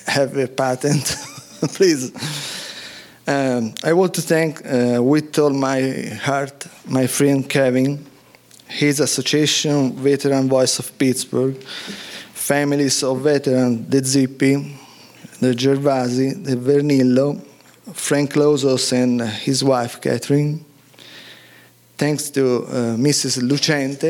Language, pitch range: English, 130-150 Hz